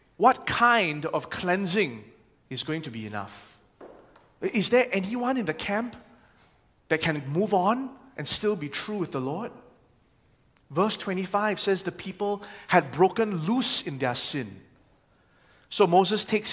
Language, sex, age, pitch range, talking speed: English, male, 20-39, 150-225 Hz, 145 wpm